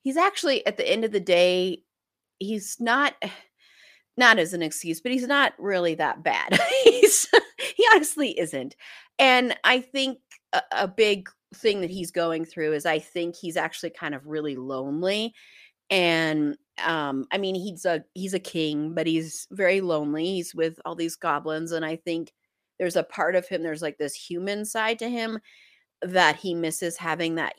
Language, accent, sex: English, American, female